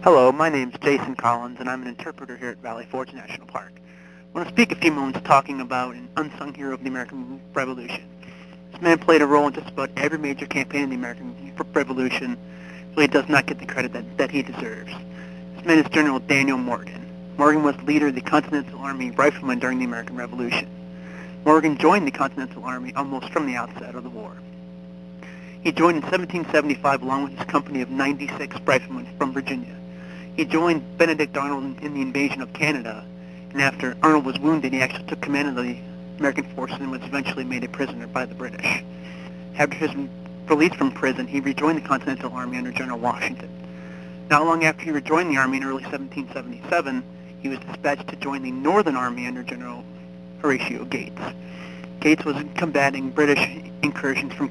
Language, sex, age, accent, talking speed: English, male, 30-49, American, 190 wpm